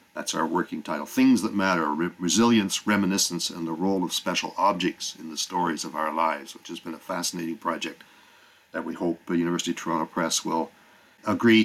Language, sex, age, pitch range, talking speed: English, male, 50-69, 90-105 Hz, 195 wpm